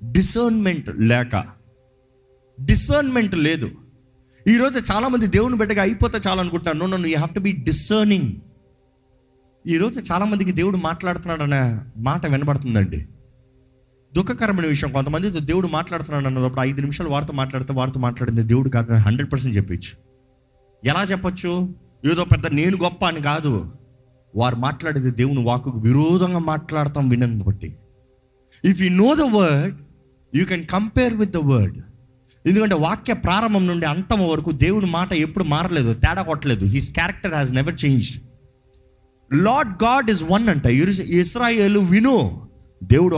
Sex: male